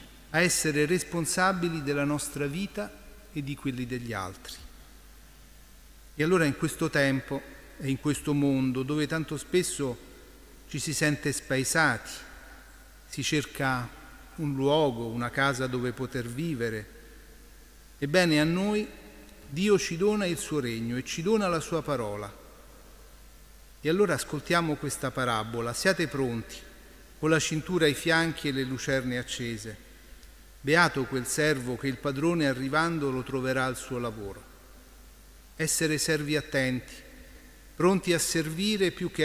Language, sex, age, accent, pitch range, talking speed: Italian, male, 40-59, native, 130-165 Hz, 135 wpm